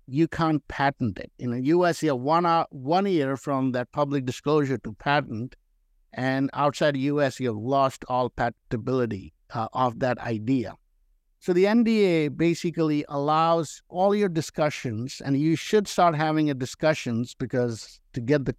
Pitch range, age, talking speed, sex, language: 125-160 Hz, 50-69, 160 wpm, male, English